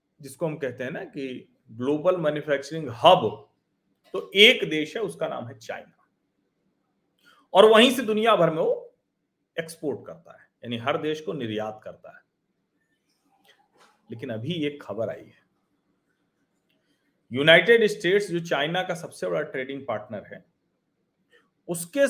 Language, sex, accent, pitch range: Hindi, male, native, 140-215 Hz